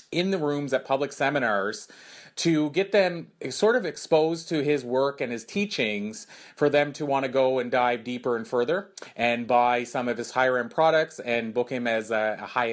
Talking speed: 205 wpm